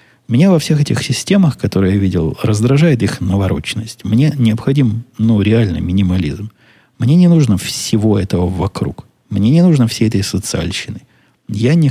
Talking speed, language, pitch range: 150 wpm, Russian, 95-130 Hz